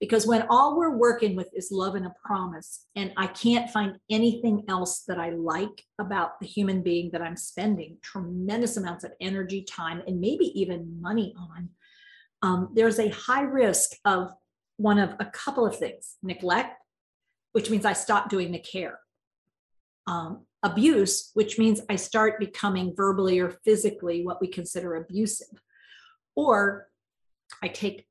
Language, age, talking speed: English, 40-59, 160 wpm